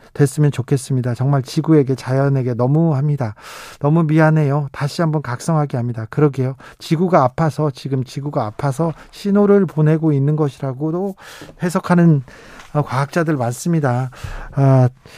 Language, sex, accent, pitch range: Korean, male, native, 135-170 Hz